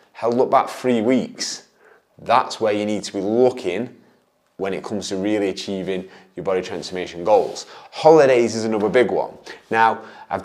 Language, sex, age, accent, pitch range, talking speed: English, male, 30-49, British, 115-150 Hz, 160 wpm